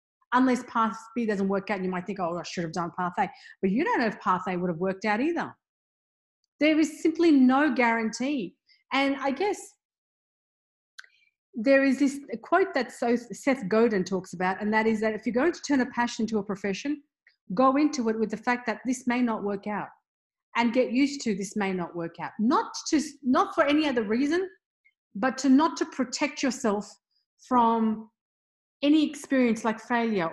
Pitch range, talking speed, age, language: 200-265 Hz, 195 wpm, 40-59, English